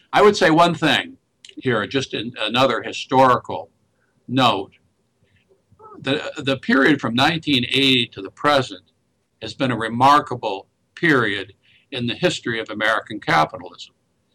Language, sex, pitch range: English, male, 120-145 Hz